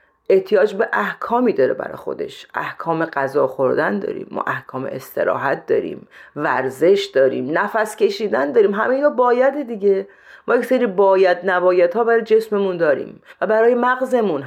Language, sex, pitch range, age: Persian, female, 155-250 Hz, 40-59